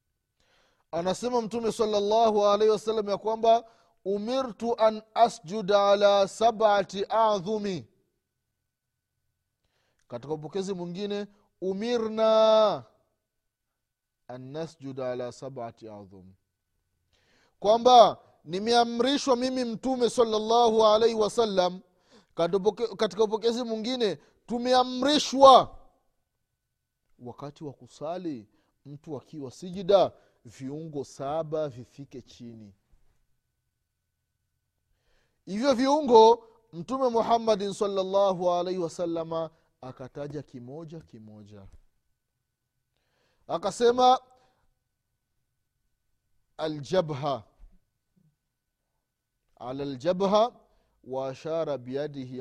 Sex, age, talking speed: male, 30-49, 70 wpm